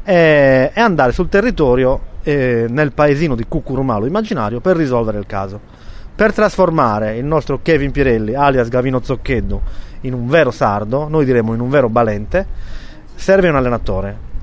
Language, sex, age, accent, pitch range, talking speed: Italian, male, 30-49, native, 110-145 Hz, 150 wpm